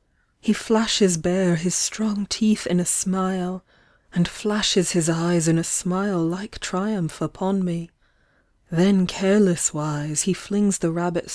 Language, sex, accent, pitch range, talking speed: English, female, British, 175-200 Hz, 135 wpm